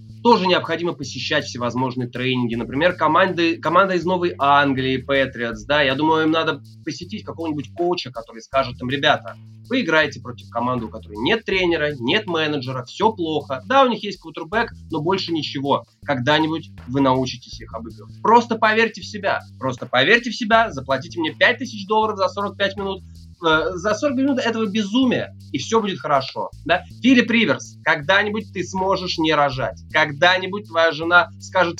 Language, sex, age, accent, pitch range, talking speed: Russian, male, 20-39, native, 120-190 Hz, 160 wpm